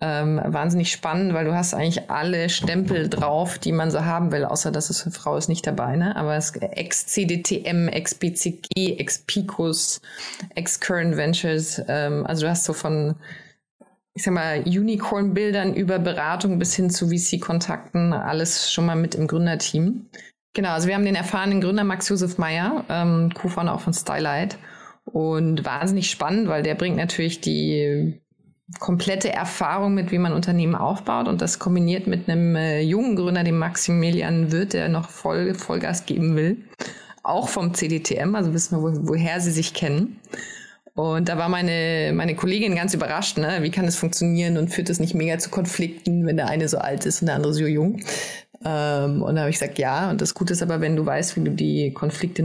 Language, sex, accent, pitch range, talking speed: German, female, German, 160-185 Hz, 190 wpm